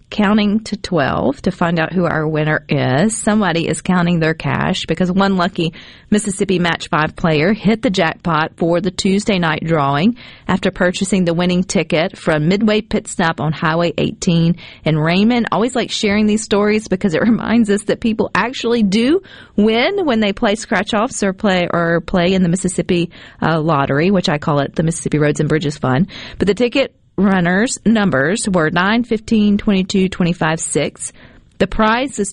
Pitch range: 165-220 Hz